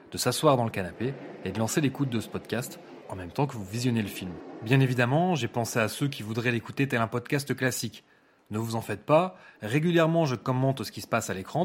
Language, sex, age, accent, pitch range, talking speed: French, male, 30-49, French, 105-135 Hz, 240 wpm